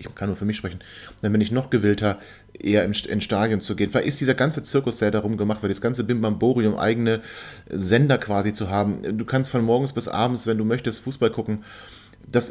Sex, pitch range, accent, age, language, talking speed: male, 100-125 Hz, German, 30-49, German, 215 wpm